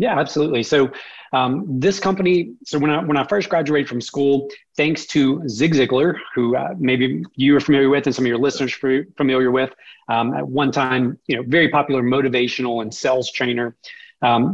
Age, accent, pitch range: 30-49, American, 130-160 Hz